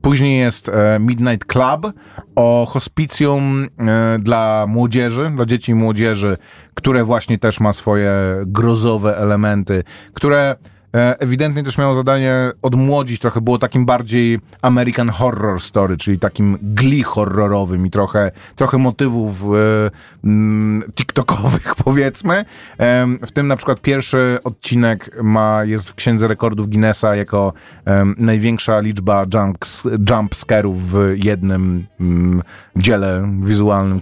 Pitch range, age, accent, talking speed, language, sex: 100-130 Hz, 30-49, native, 120 wpm, Polish, male